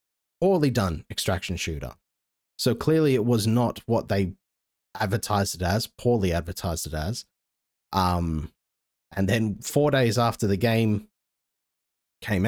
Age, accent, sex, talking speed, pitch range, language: 30-49, Australian, male, 130 wpm, 85-115 Hz, English